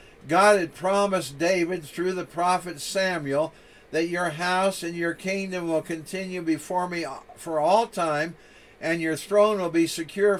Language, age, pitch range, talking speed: English, 60-79, 155-190 Hz, 155 wpm